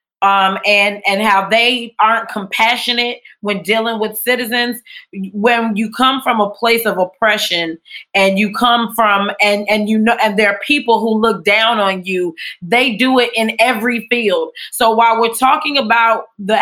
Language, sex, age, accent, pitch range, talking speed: English, female, 20-39, American, 210-250 Hz, 175 wpm